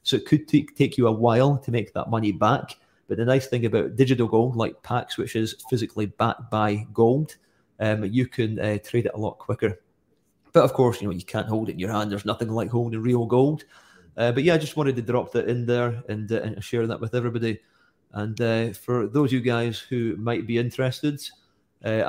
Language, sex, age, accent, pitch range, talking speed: English, male, 30-49, British, 110-130 Hz, 230 wpm